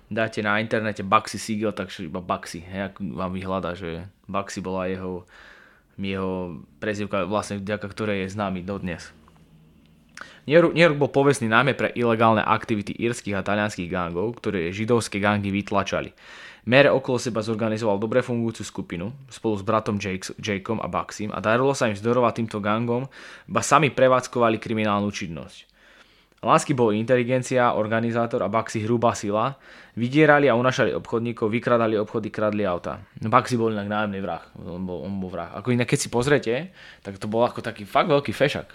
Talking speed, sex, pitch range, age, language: 165 wpm, male, 95-115 Hz, 20-39, English